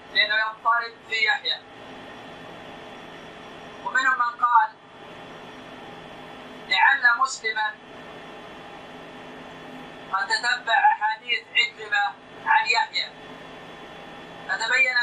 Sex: male